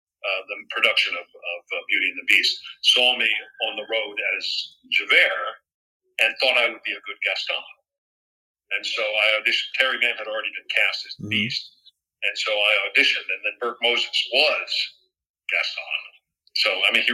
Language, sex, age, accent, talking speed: English, male, 50-69, American, 180 wpm